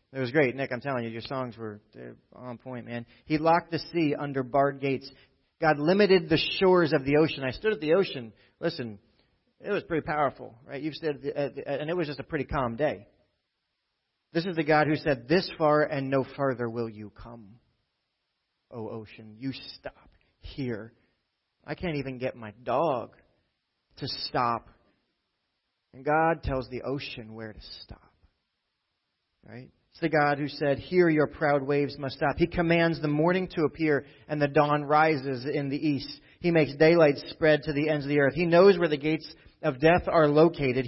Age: 30-49